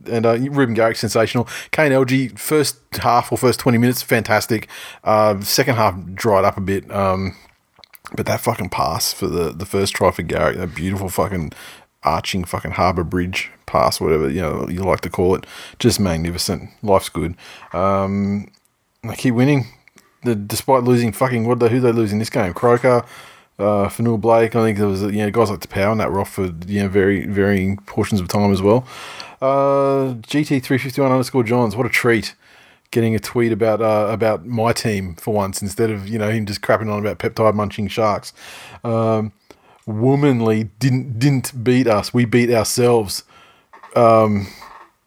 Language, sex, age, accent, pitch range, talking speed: English, male, 20-39, Australian, 100-125 Hz, 180 wpm